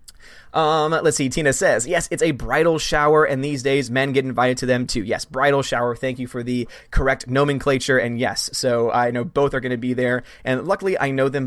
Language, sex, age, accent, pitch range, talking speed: English, male, 20-39, American, 125-150 Hz, 230 wpm